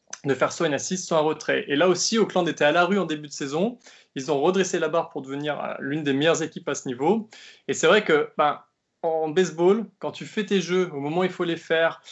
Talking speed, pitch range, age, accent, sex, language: 260 wpm, 145-185 Hz, 20-39, French, male, French